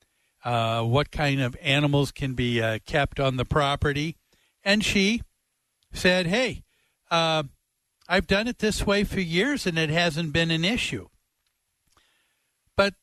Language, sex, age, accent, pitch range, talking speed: English, male, 60-79, American, 140-185 Hz, 145 wpm